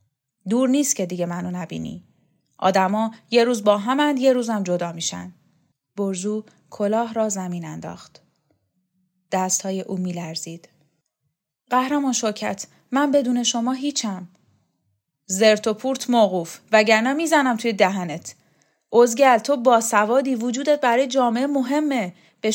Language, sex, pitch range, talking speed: Persian, female, 180-240 Hz, 130 wpm